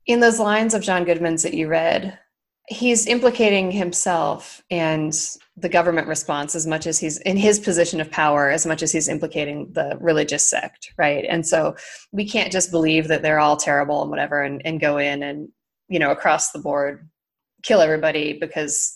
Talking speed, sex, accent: 185 wpm, female, American